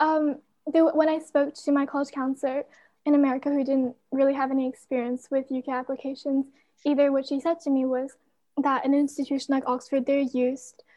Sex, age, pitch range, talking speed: female, 10-29, 255-275 Hz, 180 wpm